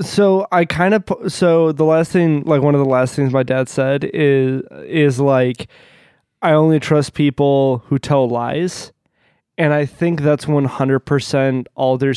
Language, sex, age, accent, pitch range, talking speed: English, male, 20-39, American, 135-160 Hz, 170 wpm